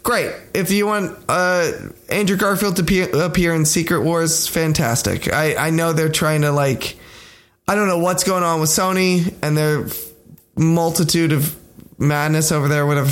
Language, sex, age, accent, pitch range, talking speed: English, male, 20-39, American, 145-185 Hz, 170 wpm